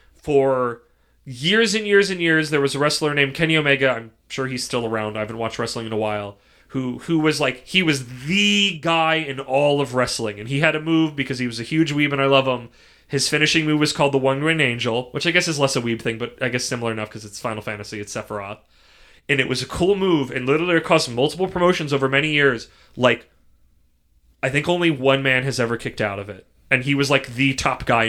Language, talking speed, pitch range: English, 245 wpm, 115-150 Hz